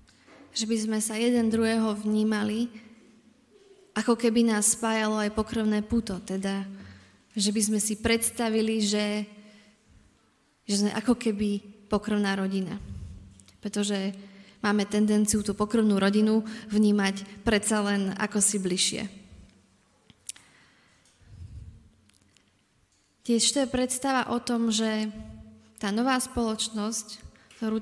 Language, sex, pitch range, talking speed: Slovak, female, 195-225 Hz, 105 wpm